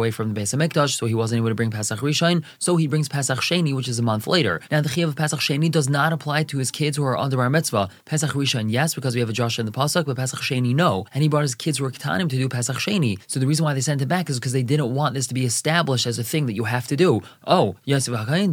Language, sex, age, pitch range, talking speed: English, male, 20-39, 125-160 Hz, 310 wpm